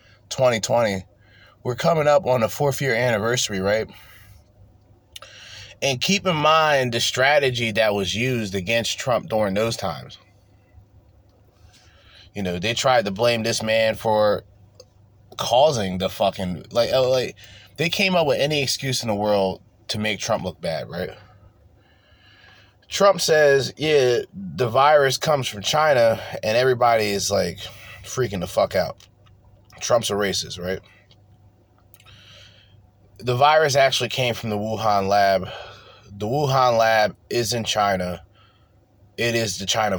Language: English